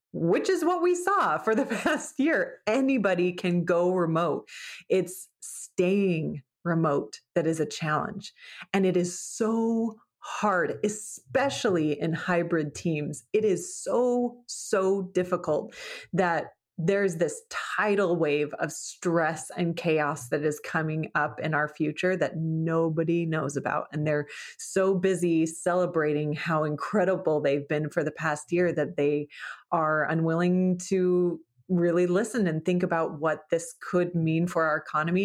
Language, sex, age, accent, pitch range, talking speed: English, female, 30-49, American, 155-185 Hz, 145 wpm